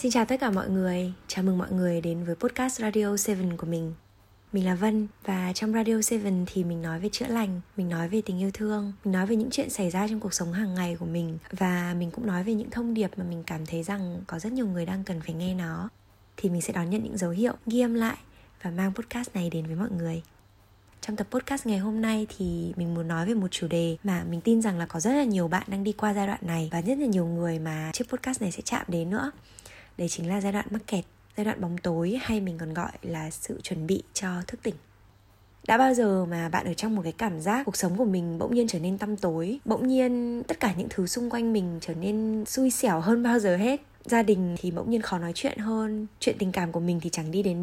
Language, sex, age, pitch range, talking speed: Vietnamese, female, 20-39, 175-220 Hz, 265 wpm